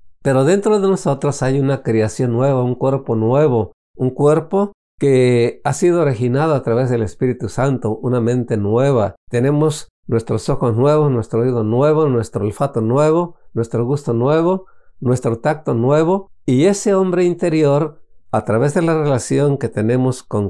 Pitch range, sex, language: 115-155 Hz, male, Spanish